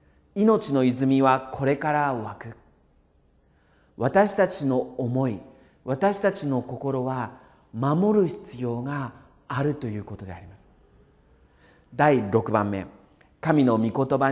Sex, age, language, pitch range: male, 40-59, Japanese, 100-145 Hz